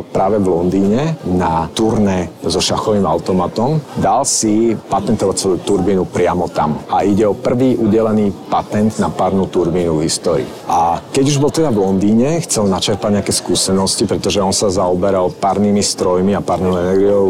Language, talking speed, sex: Slovak, 160 wpm, male